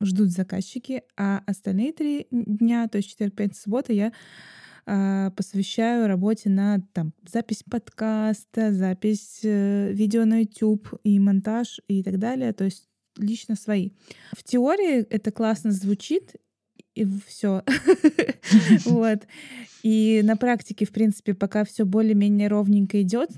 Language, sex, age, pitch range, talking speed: Russian, female, 20-39, 195-225 Hz, 125 wpm